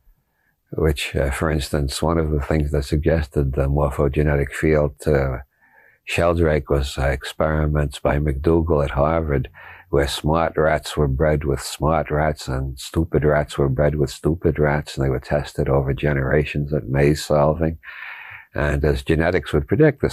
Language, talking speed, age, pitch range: English, 160 wpm, 60-79, 70-80 Hz